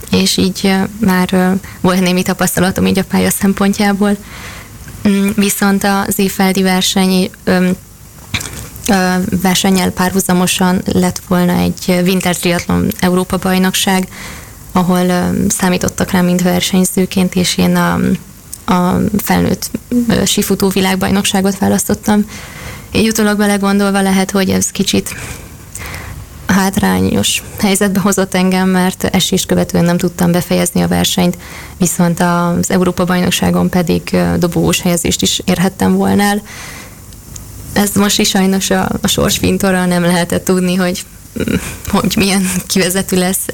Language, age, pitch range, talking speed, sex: Hungarian, 20-39, 175-195 Hz, 115 wpm, female